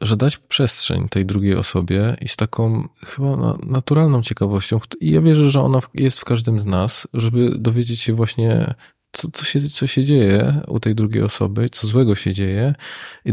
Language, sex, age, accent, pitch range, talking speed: Polish, male, 20-39, native, 105-130 Hz, 175 wpm